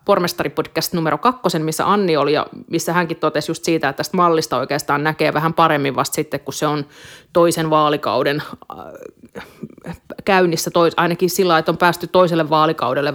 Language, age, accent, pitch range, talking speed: Finnish, 30-49, native, 155-185 Hz, 155 wpm